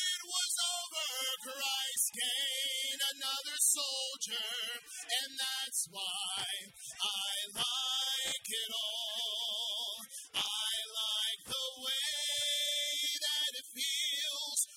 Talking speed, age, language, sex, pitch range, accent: 80 wpm, 30-49, English, male, 240-295 Hz, American